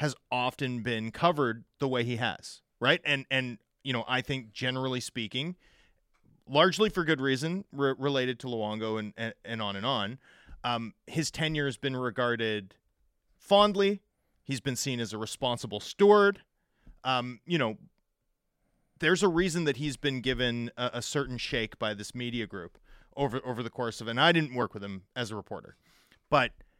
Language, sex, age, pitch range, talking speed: English, male, 30-49, 115-155 Hz, 175 wpm